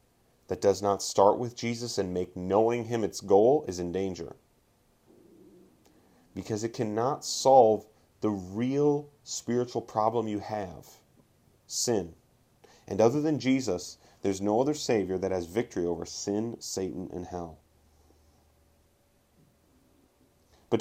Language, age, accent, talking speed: English, 30-49, American, 125 wpm